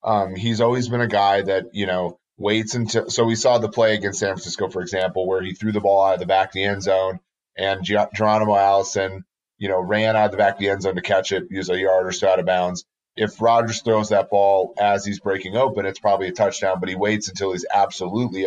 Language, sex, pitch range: English, male, 95-115 Hz